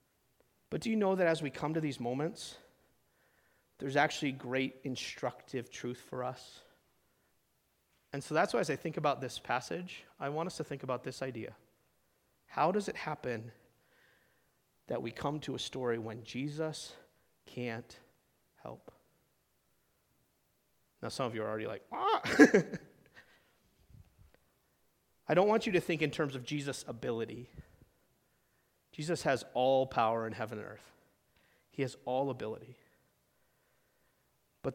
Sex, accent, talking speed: male, American, 140 wpm